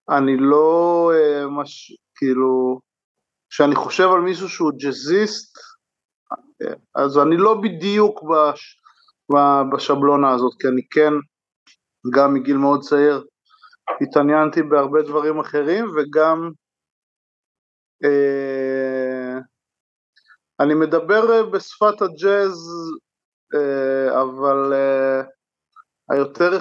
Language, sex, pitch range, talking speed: Hebrew, male, 135-160 Hz, 85 wpm